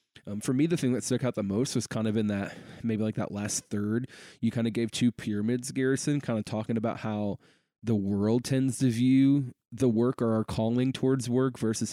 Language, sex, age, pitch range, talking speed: English, male, 20-39, 100-120 Hz, 225 wpm